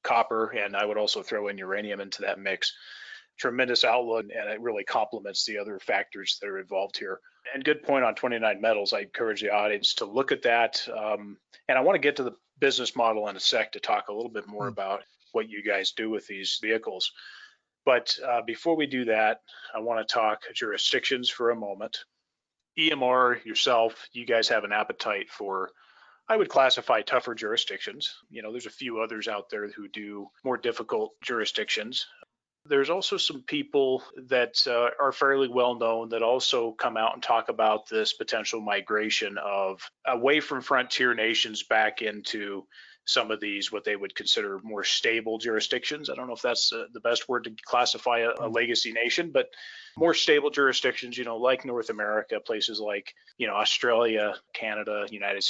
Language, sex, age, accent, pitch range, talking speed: English, male, 30-49, American, 105-150 Hz, 185 wpm